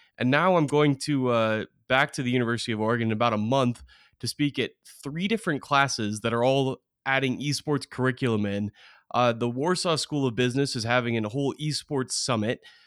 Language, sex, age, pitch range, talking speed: English, male, 20-39, 115-140 Hz, 190 wpm